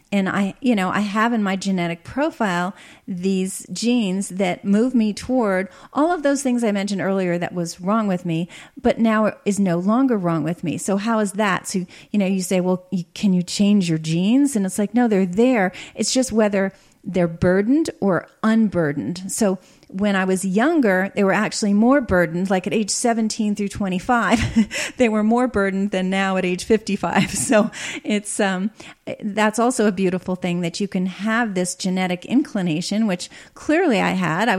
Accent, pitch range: American, 180-215 Hz